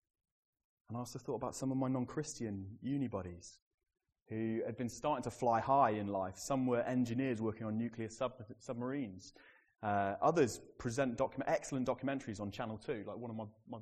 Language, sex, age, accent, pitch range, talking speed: English, male, 30-49, British, 105-125 Hz, 180 wpm